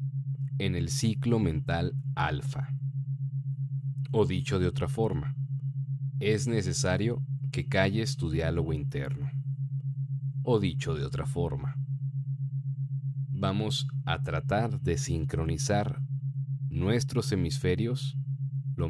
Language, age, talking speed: Spanish, 40-59, 95 wpm